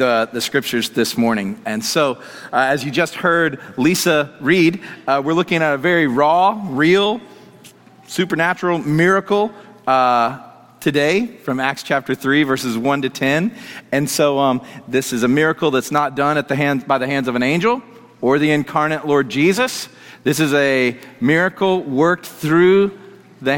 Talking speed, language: 165 wpm, English